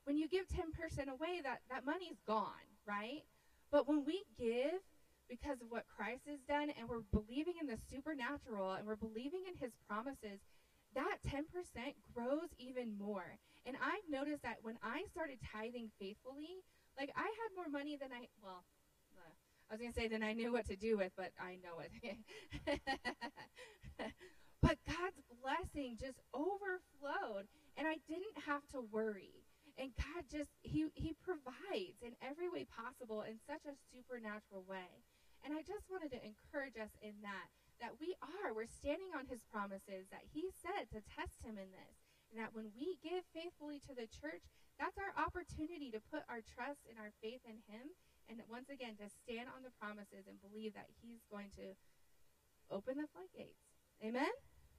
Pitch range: 220-300 Hz